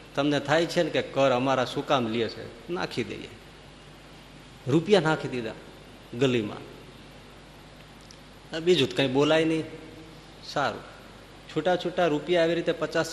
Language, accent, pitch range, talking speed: Gujarati, native, 130-160 Hz, 115 wpm